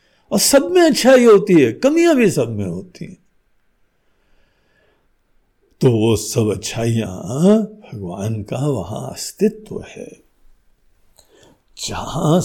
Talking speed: 105 wpm